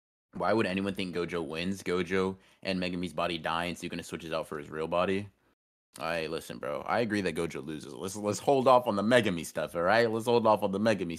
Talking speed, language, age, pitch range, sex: 245 wpm, English, 30-49, 85-110 Hz, male